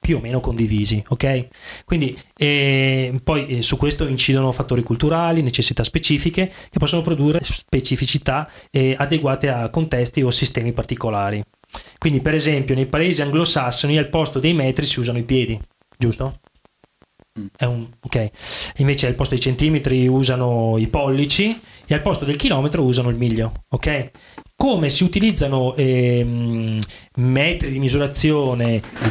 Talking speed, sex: 145 wpm, male